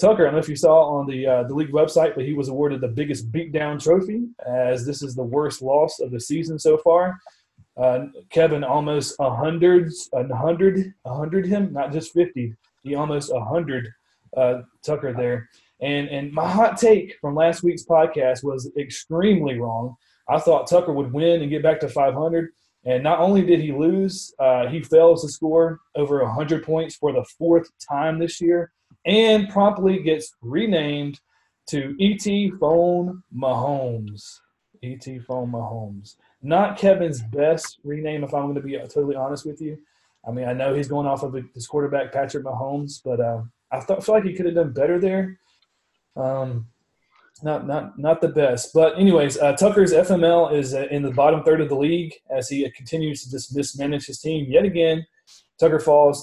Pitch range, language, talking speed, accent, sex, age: 135-165 Hz, English, 180 wpm, American, male, 30-49